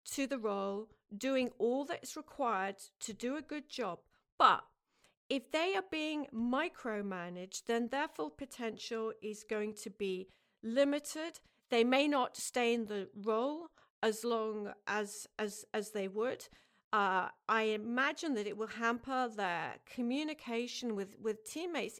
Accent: British